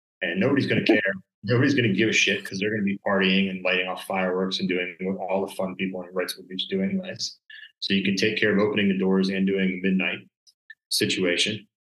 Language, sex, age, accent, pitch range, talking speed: English, male, 30-49, American, 95-115 Hz, 230 wpm